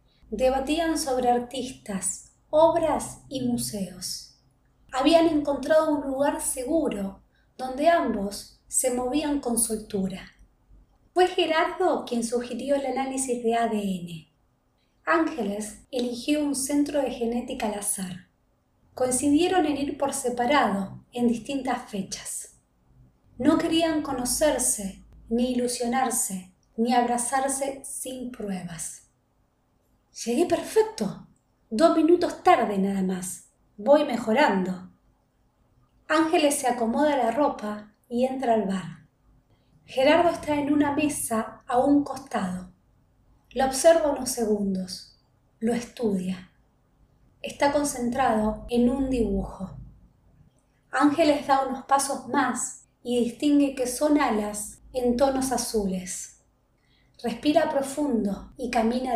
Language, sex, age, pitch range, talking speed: Spanish, female, 20-39, 210-285 Hz, 105 wpm